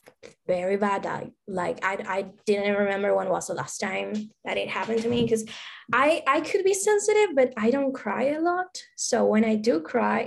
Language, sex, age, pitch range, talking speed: English, female, 10-29, 210-260 Hz, 200 wpm